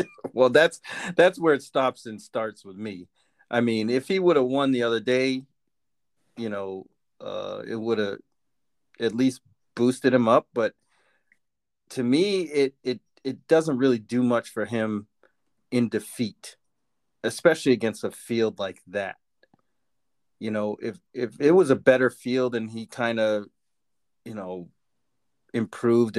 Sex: male